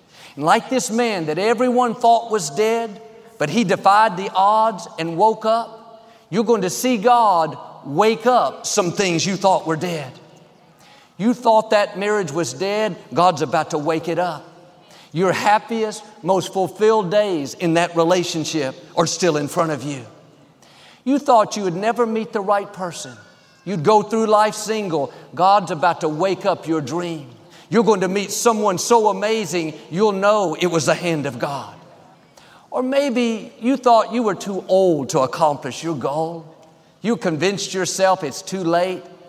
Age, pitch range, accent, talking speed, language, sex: 50-69, 165-215 Hz, American, 170 wpm, English, male